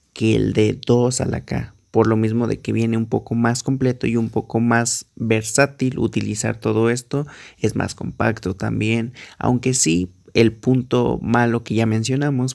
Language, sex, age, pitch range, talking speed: Spanish, male, 30-49, 105-125 Hz, 175 wpm